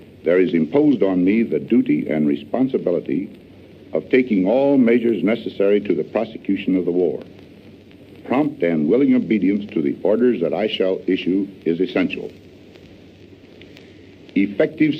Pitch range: 95-130 Hz